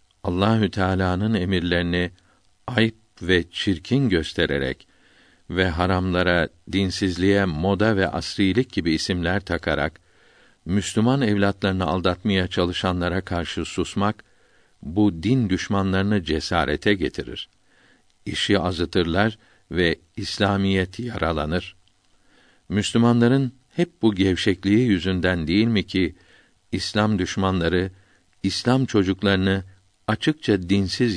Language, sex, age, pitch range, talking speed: Turkish, male, 60-79, 90-105 Hz, 90 wpm